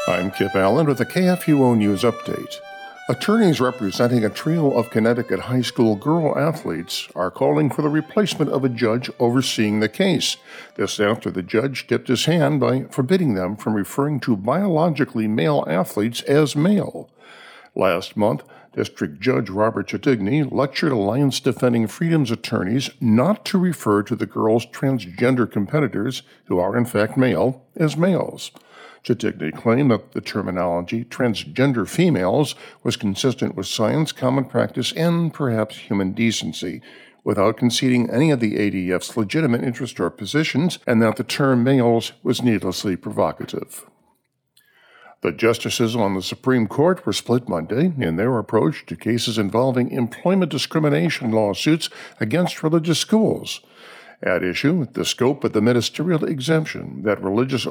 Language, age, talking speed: English, 50-69, 145 wpm